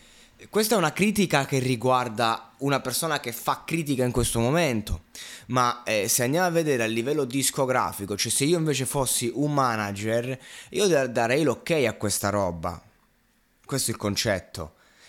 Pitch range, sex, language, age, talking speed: 105-135 Hz, male, Italian, 20-39, 160 wpm